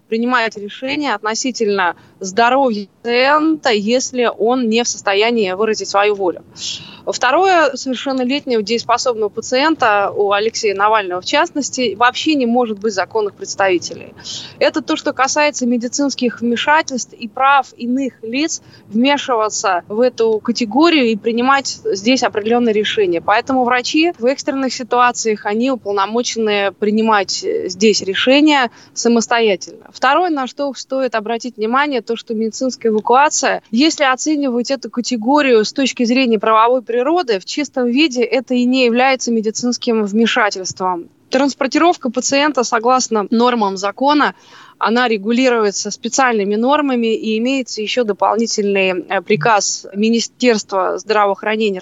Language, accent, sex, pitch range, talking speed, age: Russian, native, female, 215-260 Hz, 115 wpm, 20-39